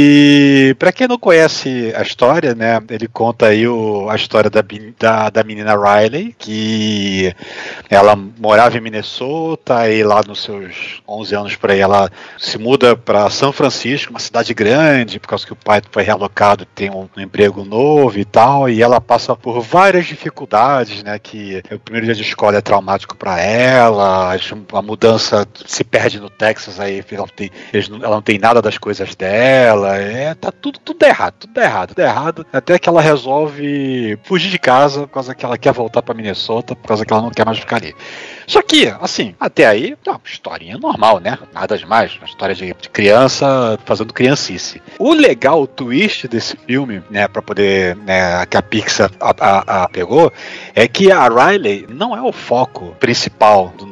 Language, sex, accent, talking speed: Portuguese, male, Brazilian, 185 wpm